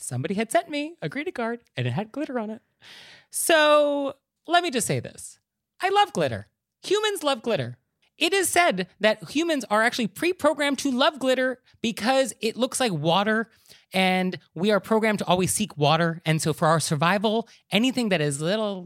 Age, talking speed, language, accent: 30-49, 190 wpm, English, American